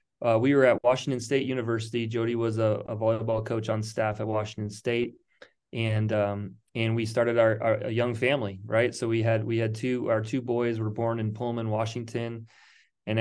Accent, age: American, 20-39